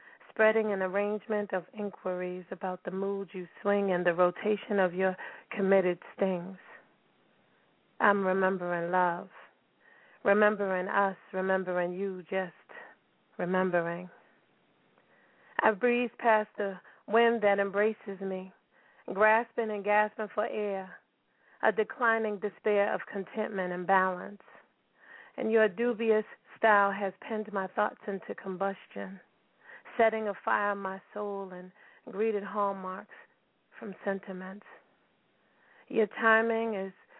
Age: 40-59